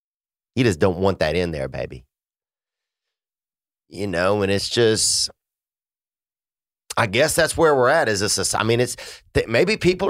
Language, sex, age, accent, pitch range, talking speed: English, male, 30-49, American, 90-120 Hz, 165 wpm